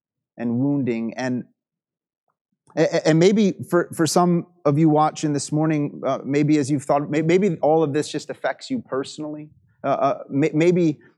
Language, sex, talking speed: English, male, 155 wpm